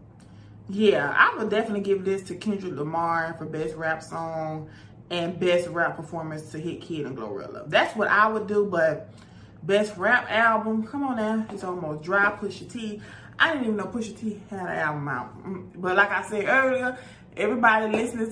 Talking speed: 185 wpm